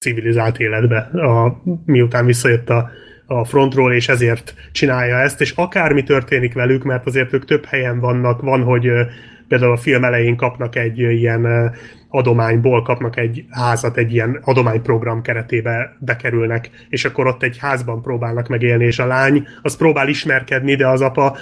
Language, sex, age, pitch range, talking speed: Hungarian, male, 30-49, 120-135 Hz, 155 wpm